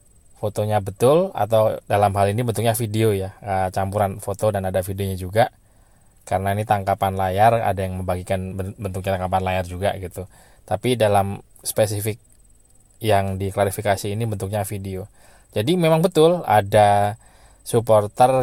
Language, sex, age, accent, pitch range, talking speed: Indonesian, male, 20-39, native, 95-110 Hz, 130 wpm